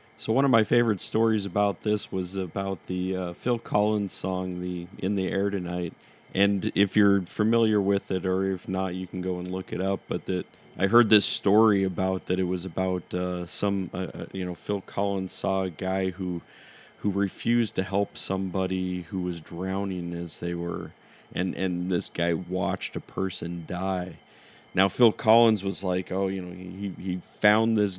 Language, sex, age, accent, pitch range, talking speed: English, male, 30-49, American, 90-105 Hz, 190 wpm